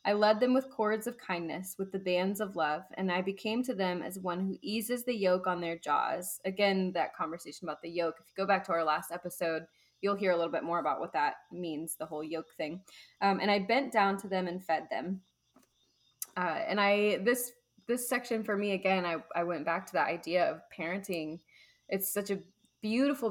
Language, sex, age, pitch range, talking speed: English, female, 10-29, 170-205 Hz, 220 wpm